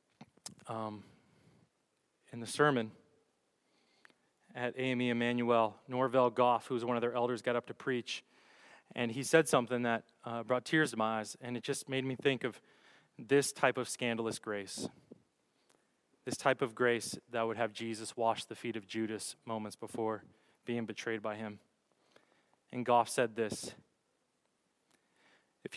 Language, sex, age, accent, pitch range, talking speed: English, male, 20-39, American, 110-130 Hz, 155 wpm